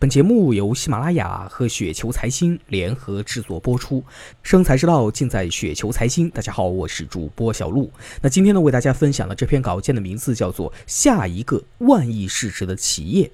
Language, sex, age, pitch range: Chinese, male, 20-39, 105-155 Hz